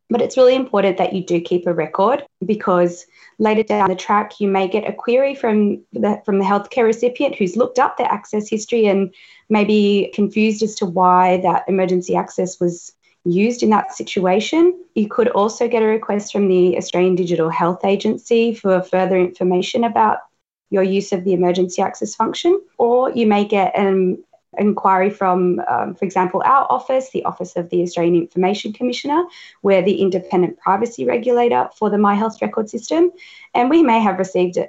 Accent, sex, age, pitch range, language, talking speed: Australian, female, 20-39, 180-230 Hz, English, 180 wpm